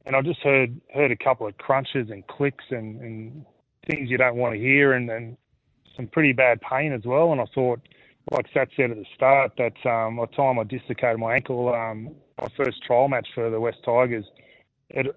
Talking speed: 220 wpm